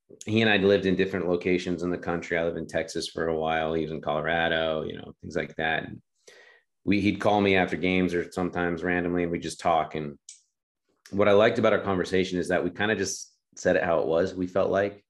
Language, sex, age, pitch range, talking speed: English, male, 30-49, 90-105 Hz, 245 wpm